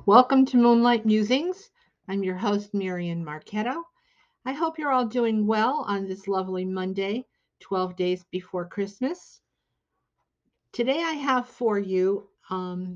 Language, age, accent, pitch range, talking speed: English, 50-69, American, 180-235 Hz, 135 wpm